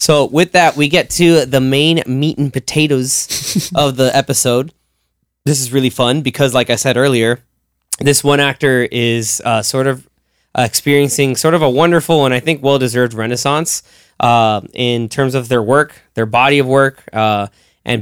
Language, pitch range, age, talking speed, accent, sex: English, 115-140 Hz, 10-29, 175 wpm, American, male